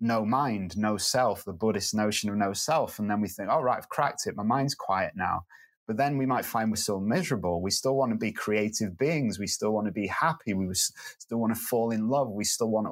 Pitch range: 105-125 Hz